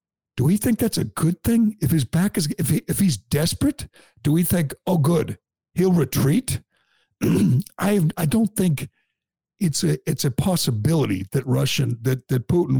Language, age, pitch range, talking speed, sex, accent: English, 60-79, 125-160 Hz, 175 wpm, male, American